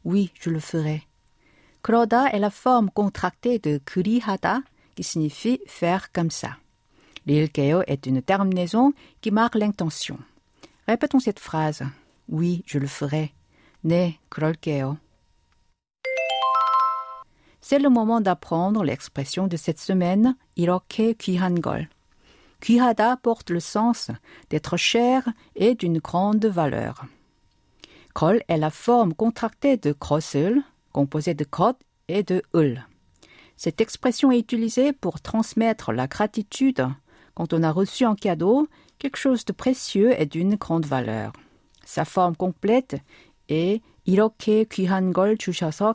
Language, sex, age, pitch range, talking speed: French, female, 50-69, 160-235 Hz, 150 wpm